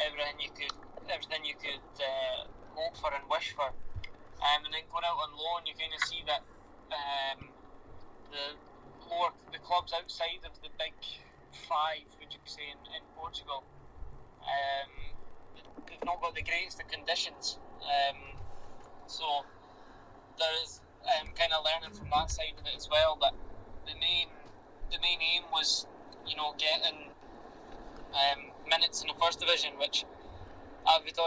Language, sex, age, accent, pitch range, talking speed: English, male, 20-39, British, 140-165 Hz, 155 wpm